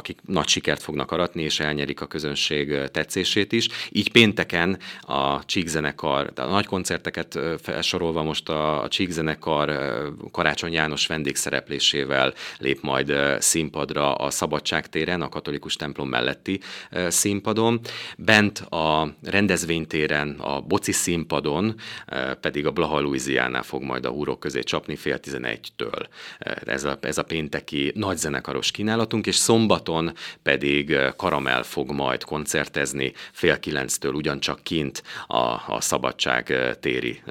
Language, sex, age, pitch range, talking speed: Hungarian, male, 30-49, 75-95 Hz, 120 wpm